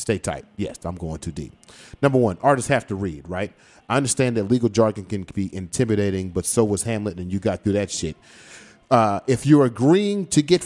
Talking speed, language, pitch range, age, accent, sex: 215 wpm, English, 100-140 Hz, 30-49, American, male